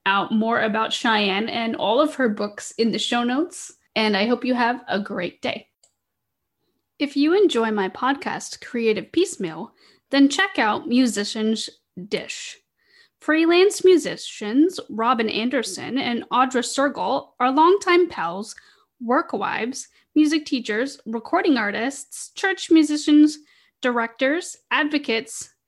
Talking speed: 120 wpm